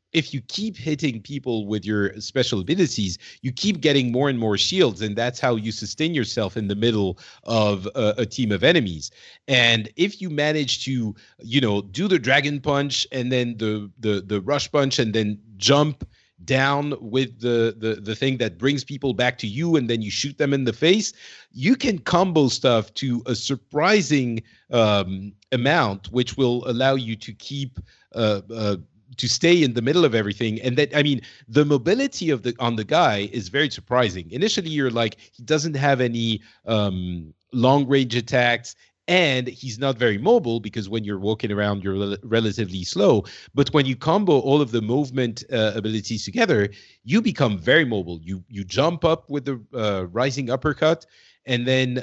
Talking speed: 185 wpm